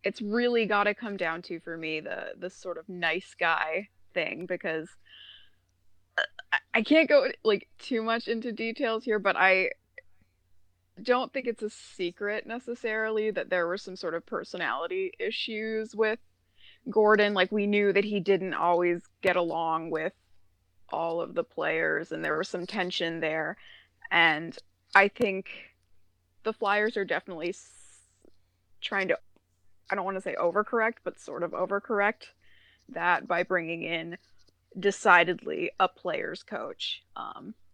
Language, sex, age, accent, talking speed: English, female, 20-39, American, 150 wpm